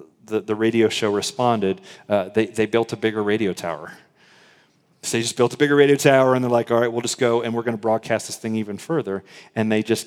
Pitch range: 100-120 Hz